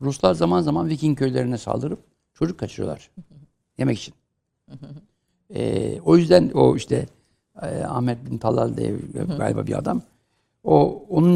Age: 60-79